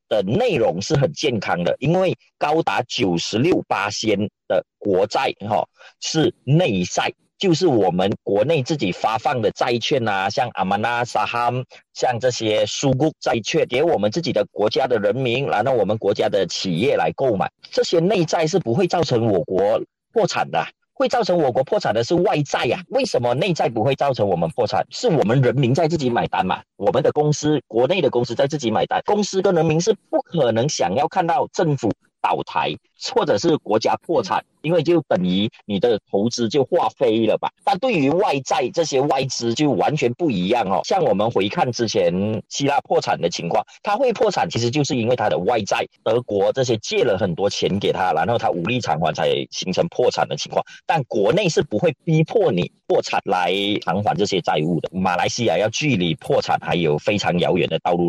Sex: male